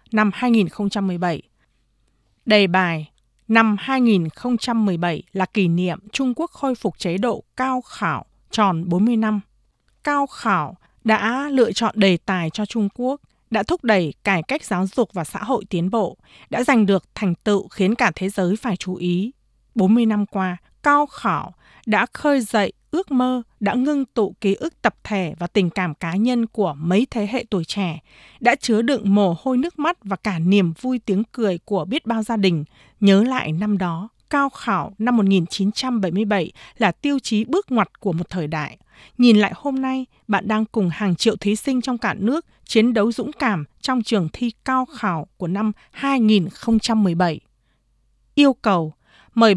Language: Vietnamese